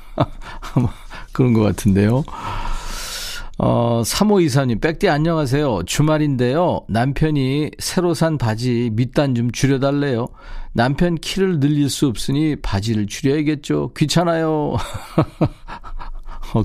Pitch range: 105-150 Hz